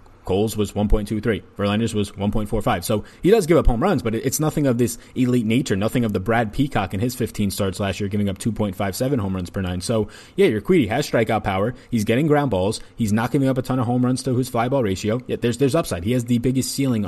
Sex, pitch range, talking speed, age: male, 105-125 Hz, 290 wpm, 20-39